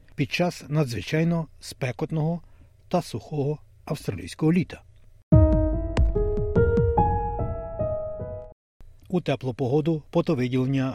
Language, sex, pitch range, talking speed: Ukrainian, male, 105-155 Hz, 60 wpm